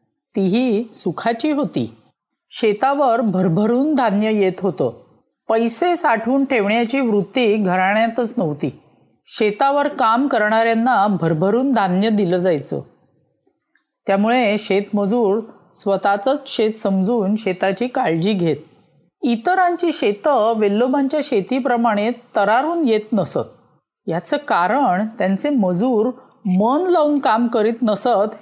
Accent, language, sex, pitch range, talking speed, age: native, Marathi, female, 200-270 Hz, 95 wpm, 40-59